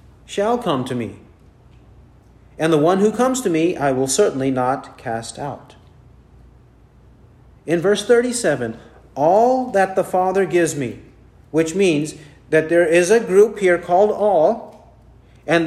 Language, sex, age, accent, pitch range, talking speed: English, male, 40-59, American, 130-190 Hz, 140 wpm